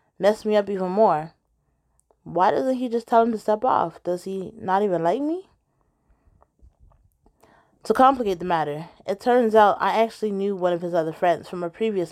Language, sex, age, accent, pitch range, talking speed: English, female, 20-39, American, 175-215 Hz, 190 wpm